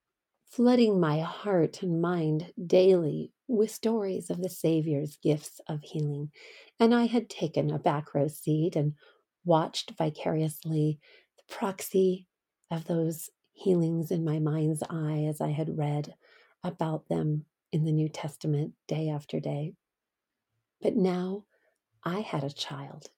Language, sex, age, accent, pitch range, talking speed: English, female, 40-59, American, 155-200 Hz, 135 wpm